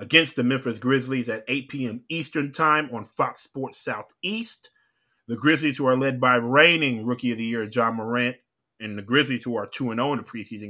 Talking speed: 195 wpm